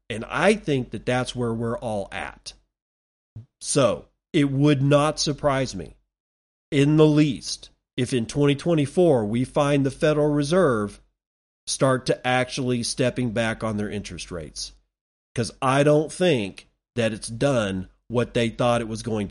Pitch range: 115-150 Hz